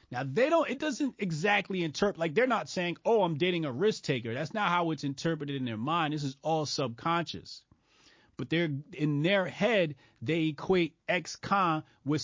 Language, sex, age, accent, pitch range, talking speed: English, male, 30-49, American, 125-170 Hz, 190 wpm